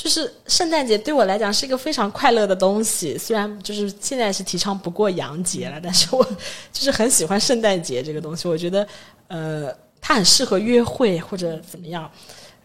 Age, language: 20-39, Chinese